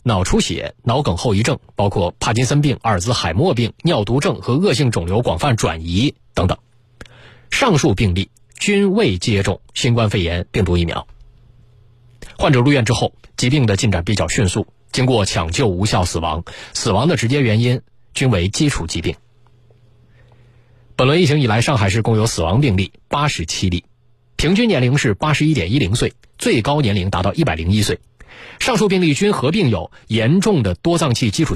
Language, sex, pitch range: Chinese, male, 100-135 Hz